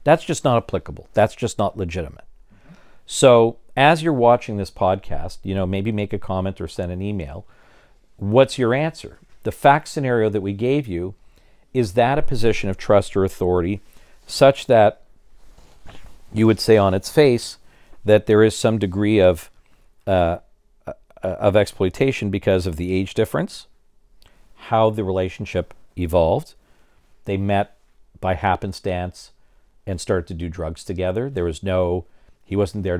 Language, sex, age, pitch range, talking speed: English, male, 50-69, 85-105 Hz, 155 wpm